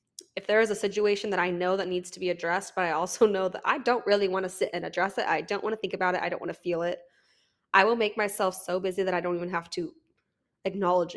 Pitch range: 185-215 Hz